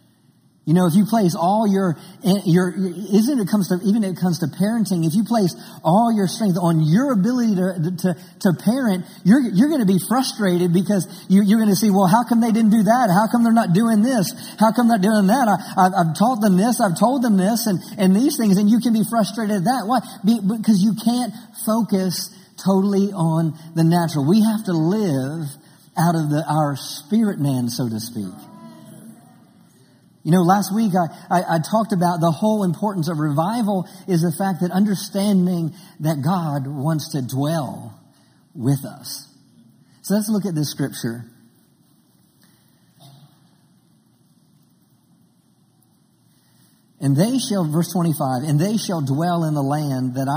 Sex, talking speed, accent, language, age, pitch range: male, 175 wpm, American, English, 50-69, 155-210 Hz